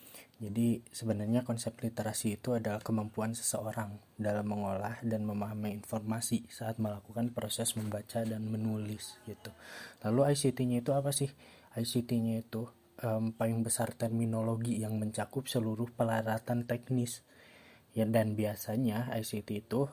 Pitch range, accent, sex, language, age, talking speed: 105-120 Hz, native, male, Indonesian, 20-39, 125 wpm